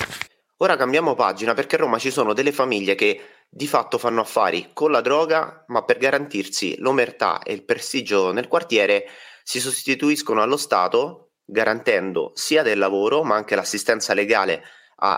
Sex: male